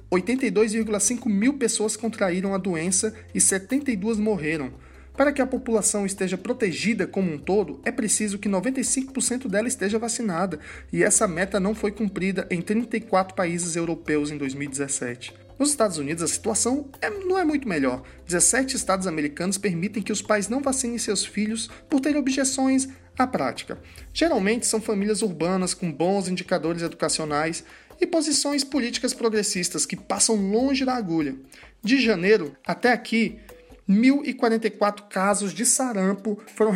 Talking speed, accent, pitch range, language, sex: 140 wpm, Brazilian, 185-240 Hz, Portuguese, male